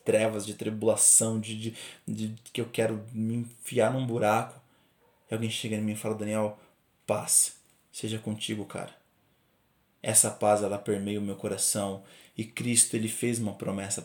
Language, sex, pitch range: Portuguese, male, 105-130 Hz